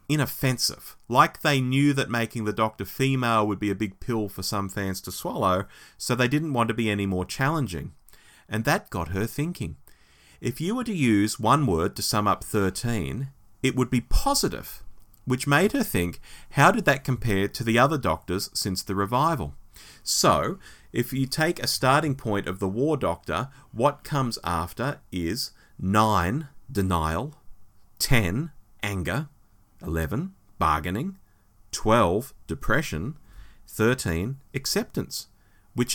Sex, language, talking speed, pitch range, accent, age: male, English, 150 wpm, 100-140 Hz, Australian, 30-49